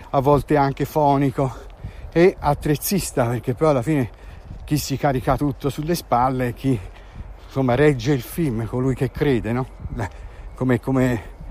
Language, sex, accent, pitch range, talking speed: Italian, male, native, 110-160 Hz, 140 wpm